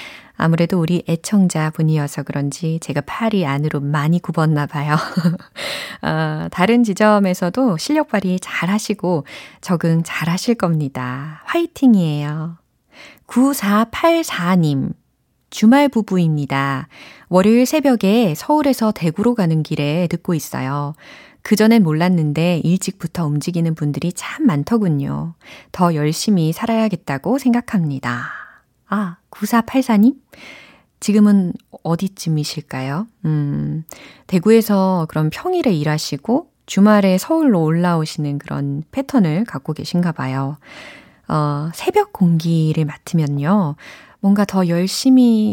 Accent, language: native, Korean